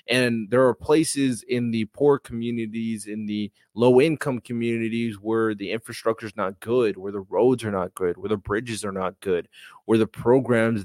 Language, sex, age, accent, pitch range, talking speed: English, male, 20-39, American, 105-135 Hz, 190 wpm